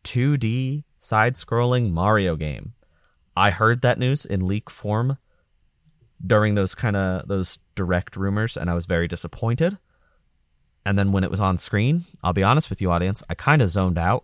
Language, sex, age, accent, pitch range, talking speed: English, male, 30-49, American, 85-105 Hz, 175 wpm